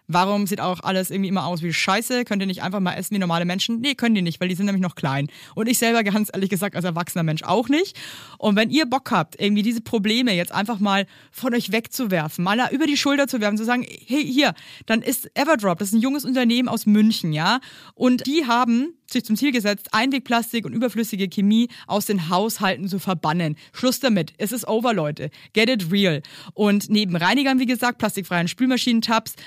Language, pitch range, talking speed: German, 180-240 Hz, 220 wpm